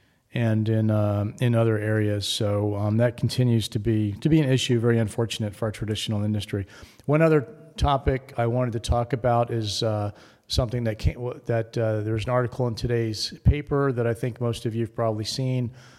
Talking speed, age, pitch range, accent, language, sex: 190 wpm, 40-59, 110-130 Hz, American, English, male